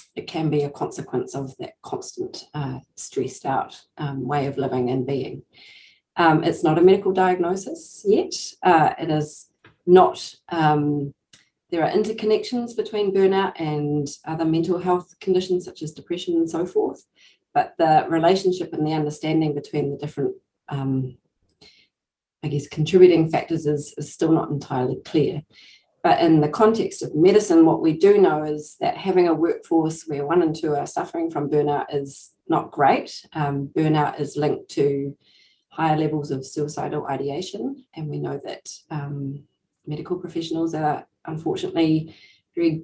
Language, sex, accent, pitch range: English, female, Australian, 145-180 Hz